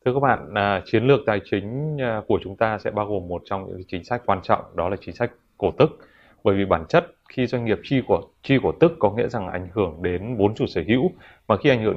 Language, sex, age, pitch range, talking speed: Vietnamese, male, 20-39, 95-120 Hz, 260 wpm